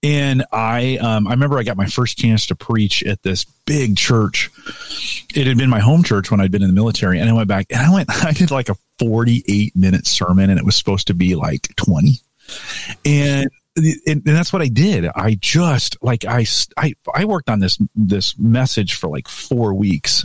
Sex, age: male, 40-59